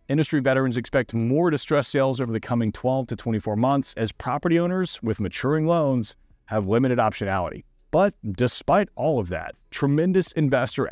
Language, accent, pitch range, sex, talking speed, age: English, American, 110-150 Hz, male, 160 wpm, 30-49